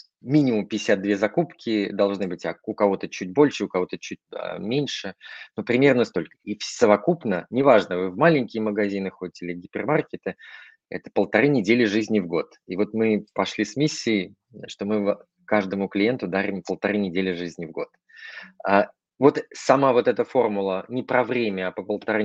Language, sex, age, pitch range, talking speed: Russian, male, 20-39, 95-110 Hz, 165 wpm